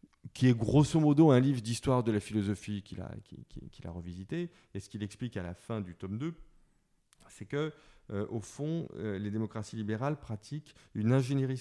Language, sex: French, male